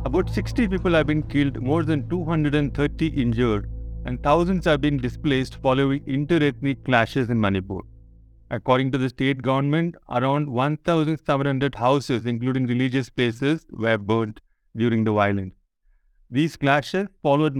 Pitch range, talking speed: 125-150 Hz, 135 wpm